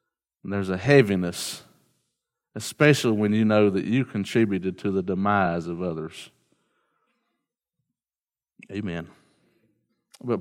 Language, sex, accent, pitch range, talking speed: English, male, American, 105-140 Hz, 100 wpm